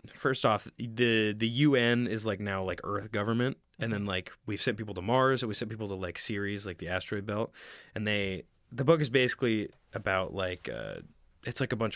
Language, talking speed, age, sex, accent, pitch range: English, 215 wpm, 20-39, male, American, 95-120 Hz